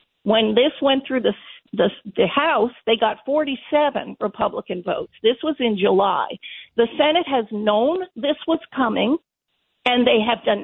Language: English